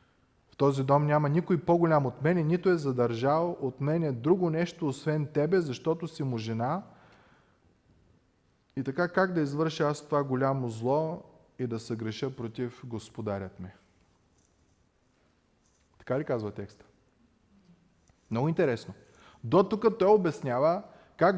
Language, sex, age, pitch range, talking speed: Bulgarian, male, 30-49, 115-170 Hz, 130 wpm